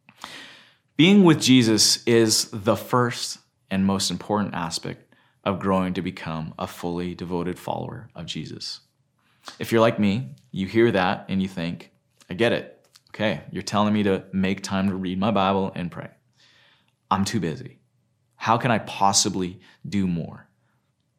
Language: English